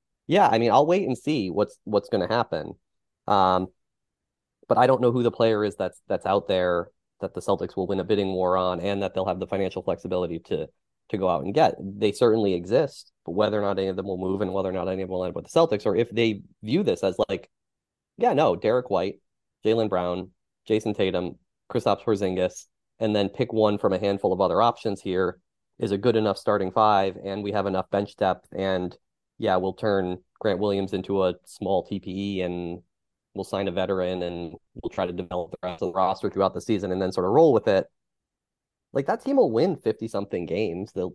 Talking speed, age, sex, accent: 225 wpm, 20-39, male, American